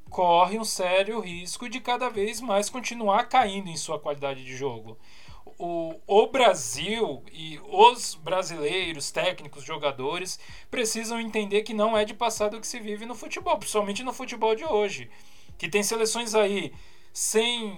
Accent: Brazilian